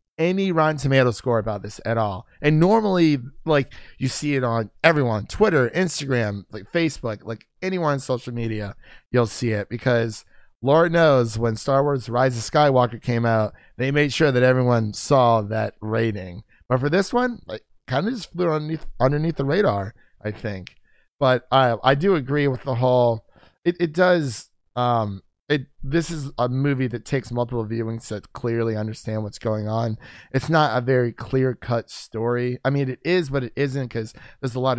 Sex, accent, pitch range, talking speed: male, American, 115-145 Hz, 185 wpm